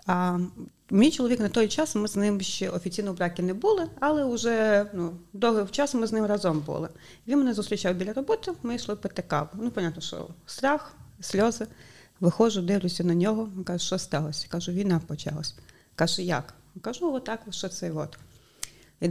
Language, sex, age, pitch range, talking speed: Ukrainian, female, 30-49, 165-215 Hz, 180 wpm